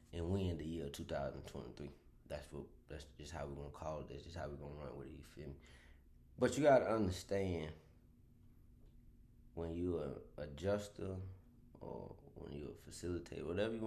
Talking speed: 185 wpm